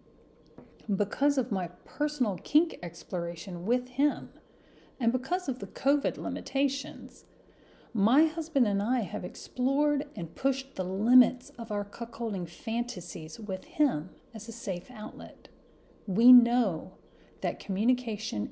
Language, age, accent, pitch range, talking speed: English, 40-59, American, 200-255 Hz, 125 wpm